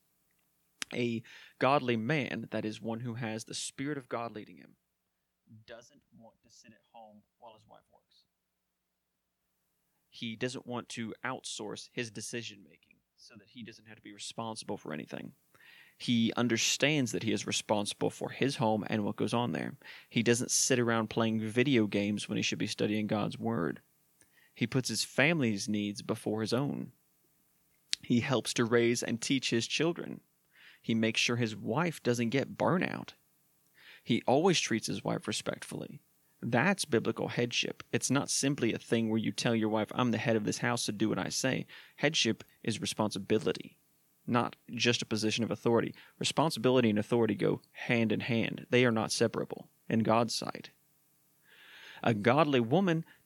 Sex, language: male, English